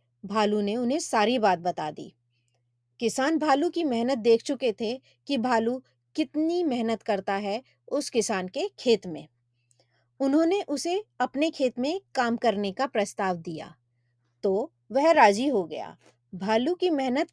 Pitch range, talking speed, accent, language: 200-280 Hz, 155 wpm, native, Hindi